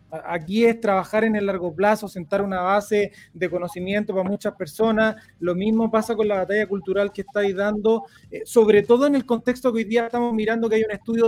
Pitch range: 205-260 Hz